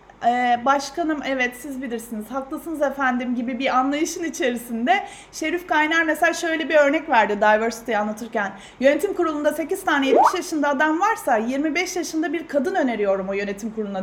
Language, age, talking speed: Turkish, 30-49, 155 wpm